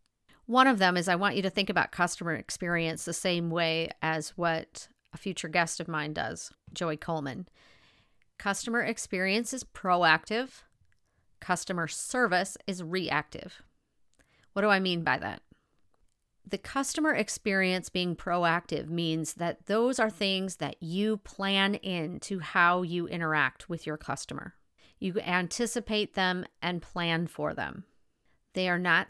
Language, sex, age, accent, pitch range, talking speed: English, female, 40-59, American, 160-195 Hz, 140 wpm